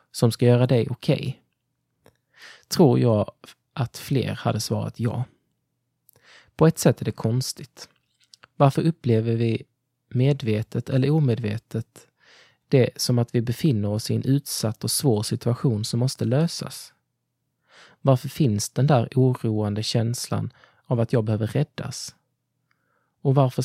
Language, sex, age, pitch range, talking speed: Swedish, male, 20-39, 115-135 Hz, 130 wpm